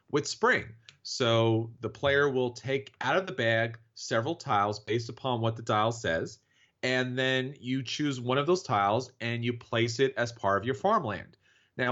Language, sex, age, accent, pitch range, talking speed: English, male, 40-59, American, 115-145 Hz, 185 wpm